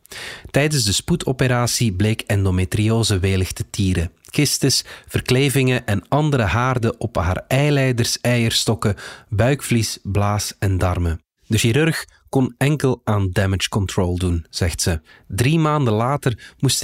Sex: male